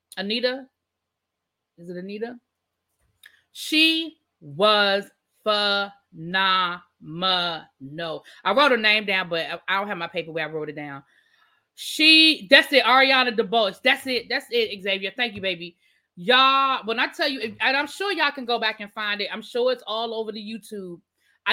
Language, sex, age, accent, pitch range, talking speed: English, female, 20-39, American, 195-265 Hz, 160 wpm